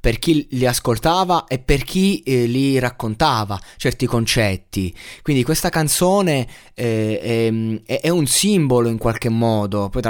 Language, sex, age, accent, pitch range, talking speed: Italian, male, 20-39, native, 105-130 Hz, 145 wpm